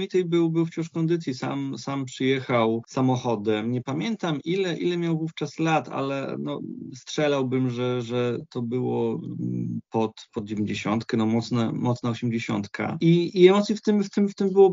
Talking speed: 165 wpm